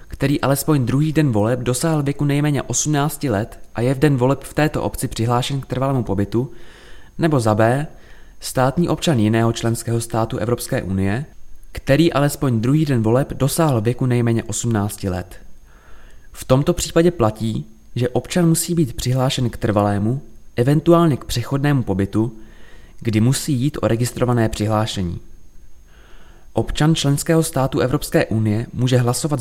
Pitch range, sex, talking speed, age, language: 105-140 Hz, male, 140 wpm, 20-39, Czech